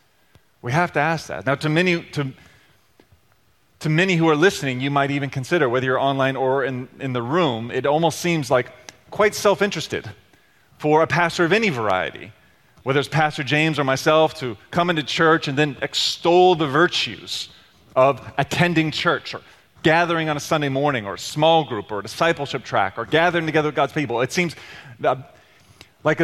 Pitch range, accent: 125-155 Hz, American